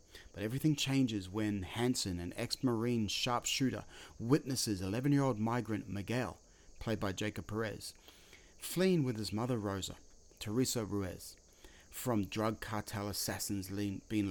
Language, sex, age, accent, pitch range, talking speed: English, male, 30-49, Australian, 95-125 Hz, 130 wpm